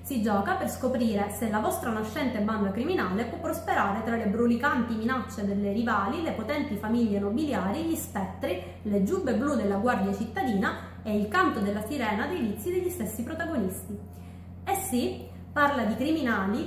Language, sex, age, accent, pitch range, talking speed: Italian, female, 30-49, native, 210-270 Hz, 160 wpm